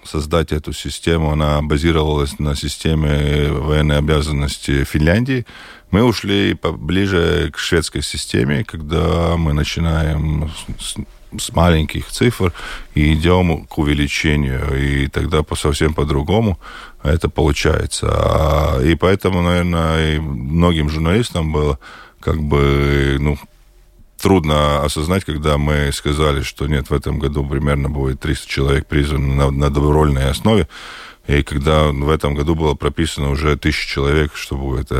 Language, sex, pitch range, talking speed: Russian, male, 70-80 Hz, 125 wpm